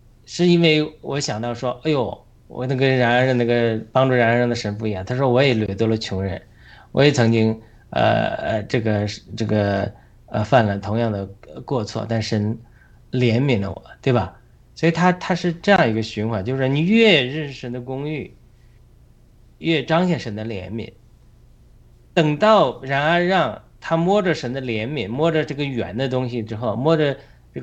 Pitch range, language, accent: 110-135 Hz, Chinese, native